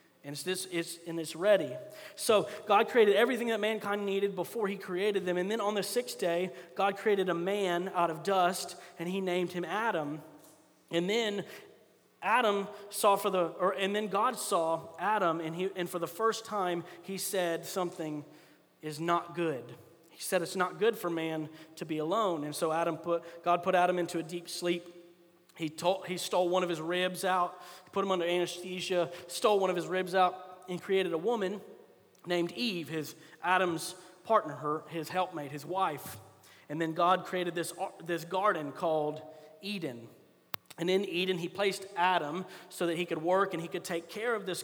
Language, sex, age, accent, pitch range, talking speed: English, male, 30-49, American, 170-195 Hz, 190 wpm